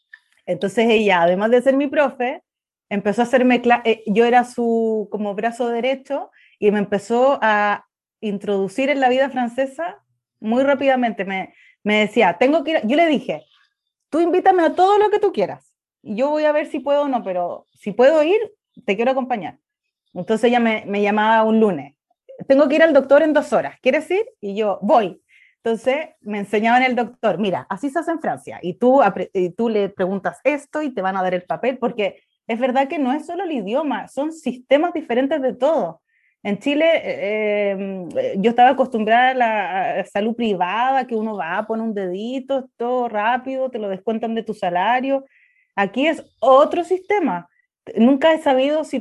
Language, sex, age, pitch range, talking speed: Spanish, female, 30-49, 215-285 Hz, 185 wpm